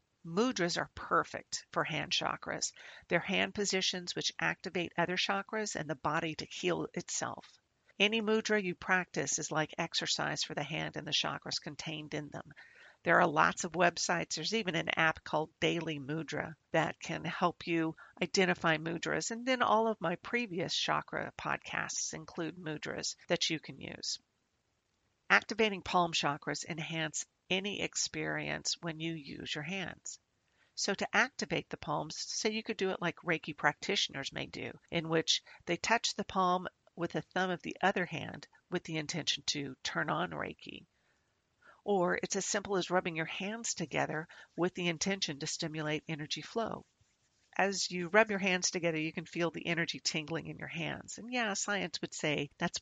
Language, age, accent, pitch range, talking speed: English, 50-69, American, 155-190 Hz, 170 wpm